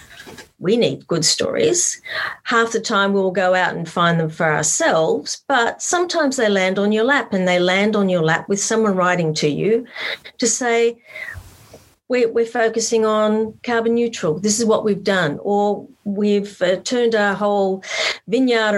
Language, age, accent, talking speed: English, 40-59, Australian, 170 wpm